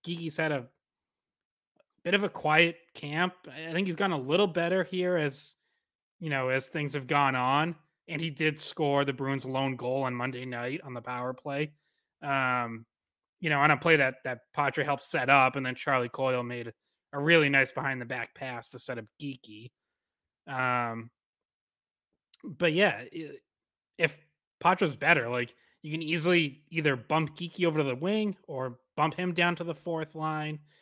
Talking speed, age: 180 wpm, 30-49